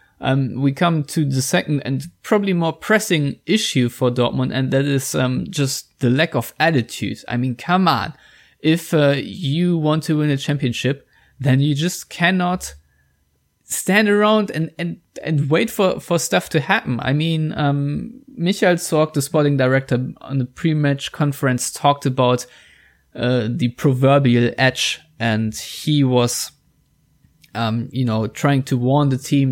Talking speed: 160 wpm